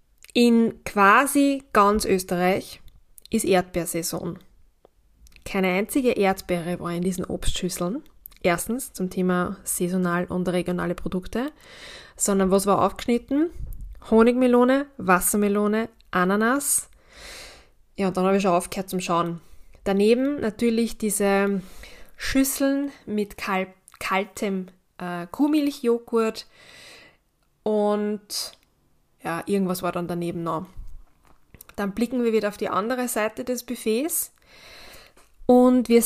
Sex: female